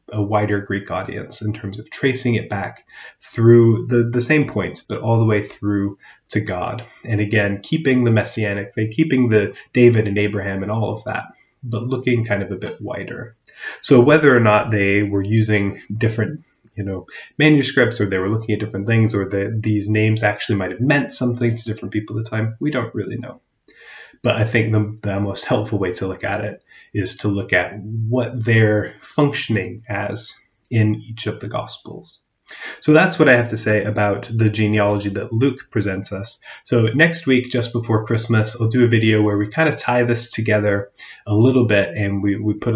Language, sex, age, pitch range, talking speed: English, male, 30-49, 100-120 Hz, 205 wpm